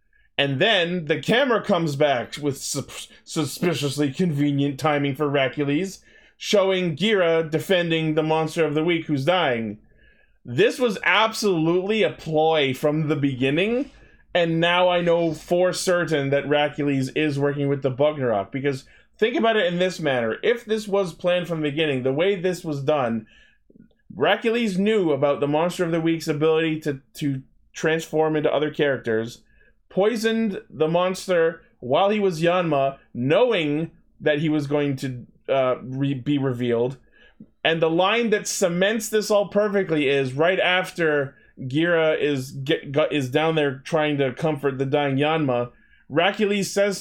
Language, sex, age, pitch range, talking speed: English, male, 20-39, 145-195 Hz, 155 wpm